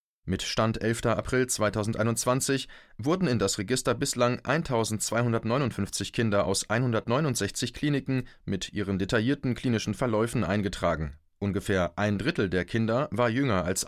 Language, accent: German, German